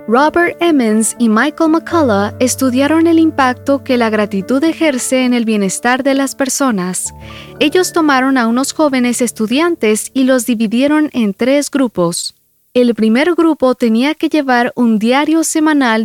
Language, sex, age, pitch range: English, female, 20-39, 220-300 Hz